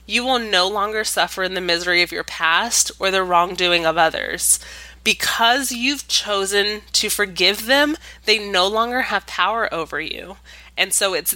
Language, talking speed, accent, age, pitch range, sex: English, 170 wpm, American, 20-39, 180-235 Hz, female